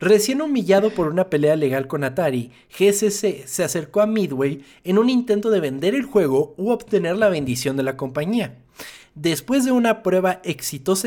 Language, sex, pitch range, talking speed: Spanish, male, 140-200 Hz, 175 wpm